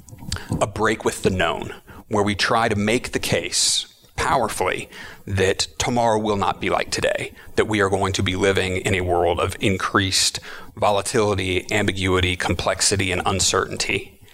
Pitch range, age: 95-110 Hz, 30-49